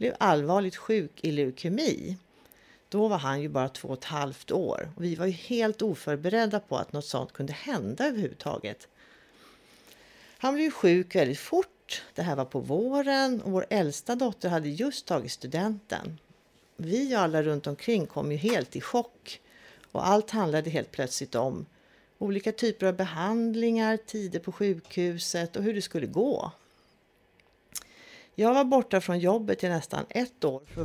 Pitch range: 155-225 Hz